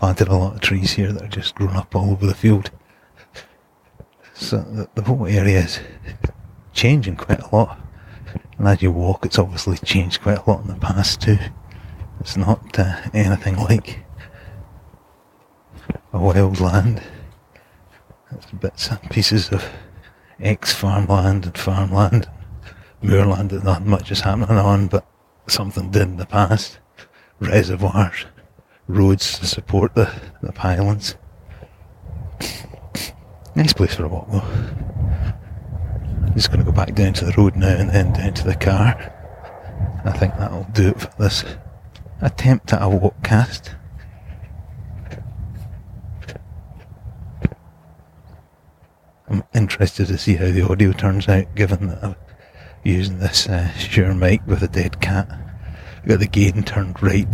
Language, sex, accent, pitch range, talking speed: English, male, British, 95-105 Hz, 140 wpm